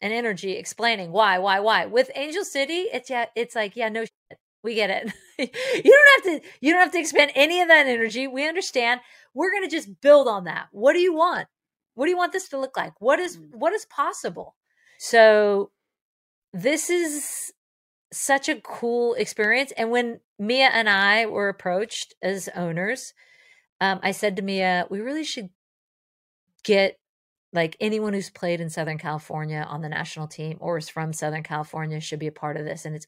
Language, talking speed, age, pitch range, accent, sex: English, 195 wpm, 40-59, 170-250 Hz, American, female